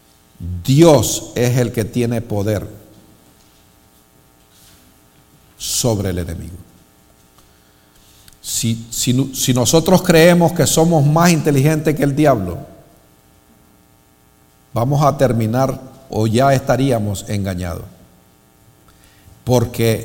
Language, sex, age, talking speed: English, male, 50-69, 85 wpm